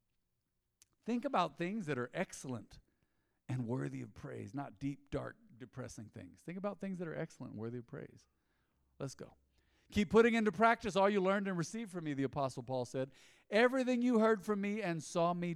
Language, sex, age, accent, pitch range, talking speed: English, male, 50-69, American, 130-200 Hz, 195 wpm